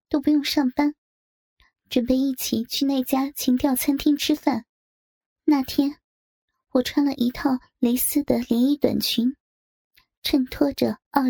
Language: Chinese